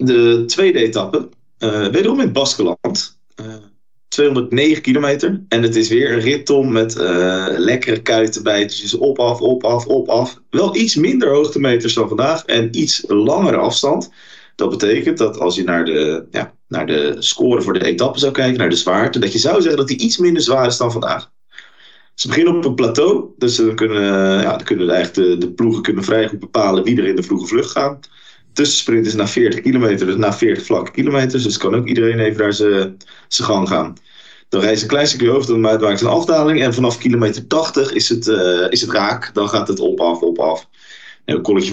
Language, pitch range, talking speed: Dutch, 105-130 Hz, 210 wpm